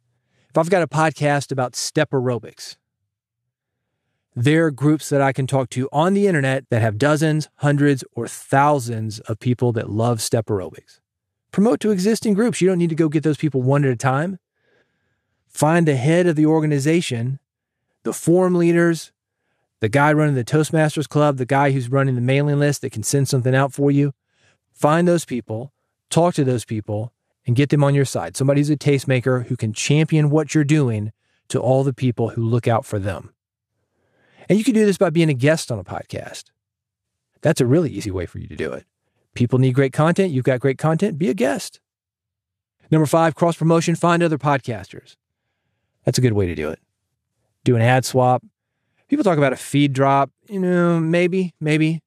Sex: male